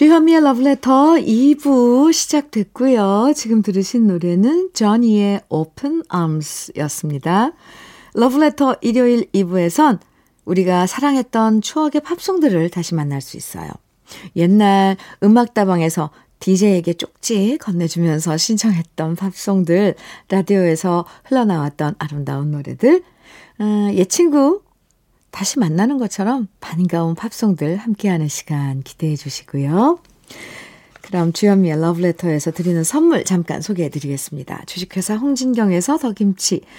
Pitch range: 170-255 Hz